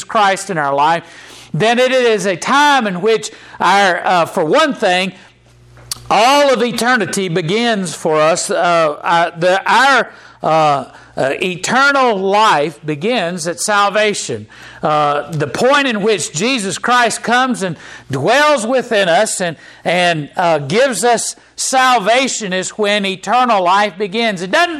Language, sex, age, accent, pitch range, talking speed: English, male, 50-69, American, 180-240 Hz, 140 wpm